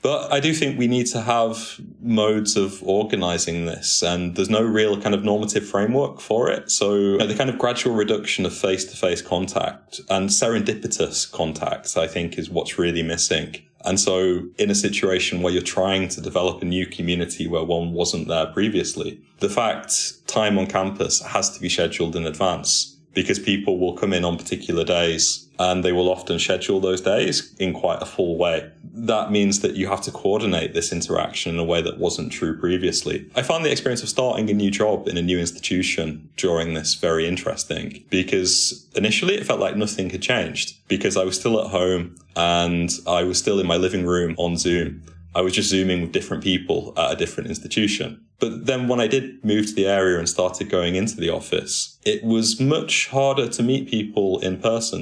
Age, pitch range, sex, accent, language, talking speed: 20-39, 85-105 Hz, male, British, English, 195 wpm